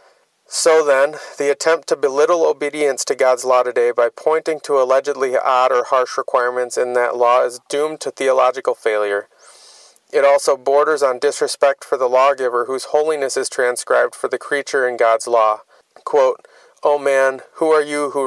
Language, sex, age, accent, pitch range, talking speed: English, male, 30-49, American, 125-150 Hz, 170 wpm